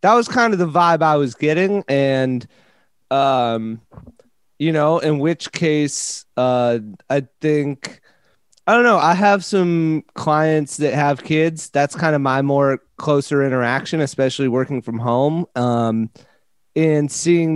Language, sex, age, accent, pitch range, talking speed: English, male, 30-49, American, 130-160 Hz, 145 wpm